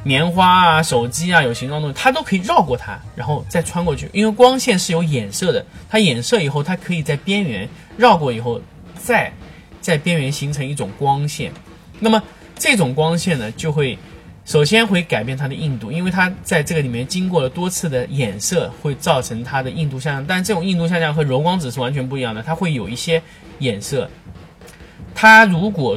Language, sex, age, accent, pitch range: Chinese, male, 20-39, native, 130-175 Hz